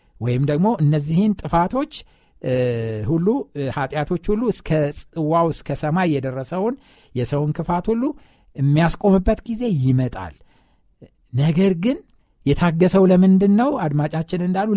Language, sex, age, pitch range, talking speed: Amharic, male, 60-79, 135-195 Hz, 95 wpm